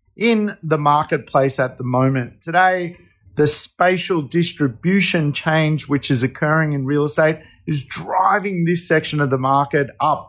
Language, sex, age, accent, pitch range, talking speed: English, male, 40-59, Australian, 135-180 Hz, 145 wpm